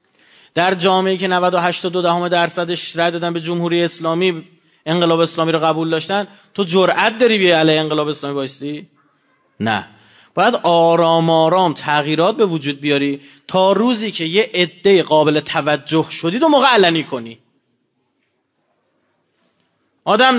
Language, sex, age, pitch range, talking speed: Persian, male, 30-49, 155-210 Hz, 130 wpm